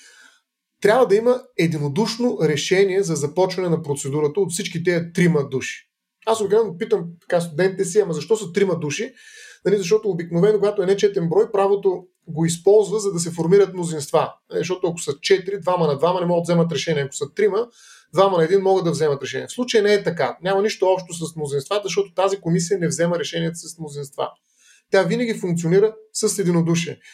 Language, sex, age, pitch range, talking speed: Bulgarian, male, 30-49, 165-215 Hz, 185 wpm